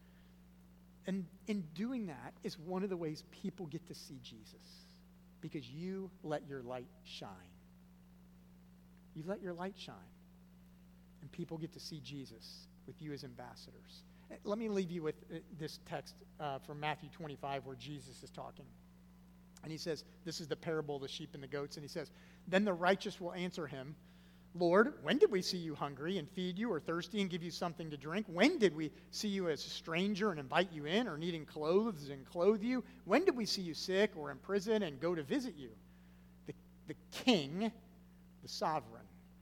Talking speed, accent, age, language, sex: 195 wpm, American, 50-69, English, male